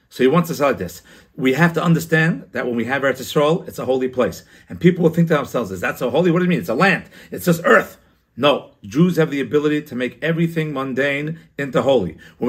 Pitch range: 135-170 Hz